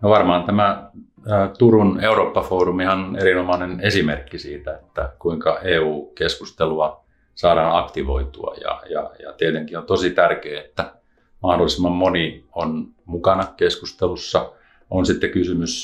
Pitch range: 80-105 Hz